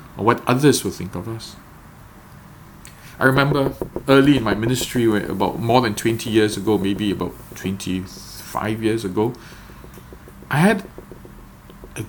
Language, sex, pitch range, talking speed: English, male, 100-125 Hz, 130 wpm